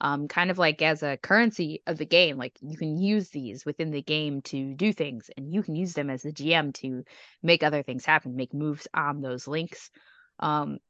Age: 20-39